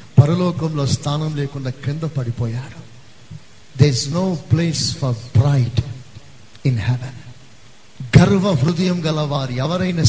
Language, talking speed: Telugu, 95 wpm